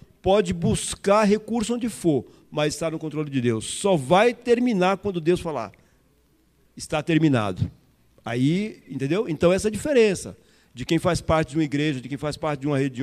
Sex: male